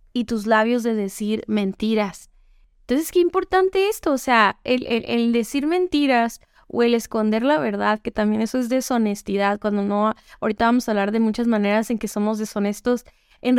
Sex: female